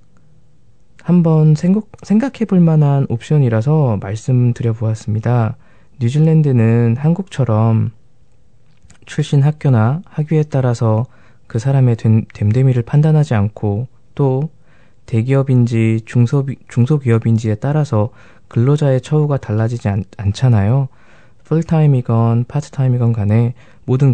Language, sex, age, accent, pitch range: Korean, male, 20-39, native, 110-145 Hz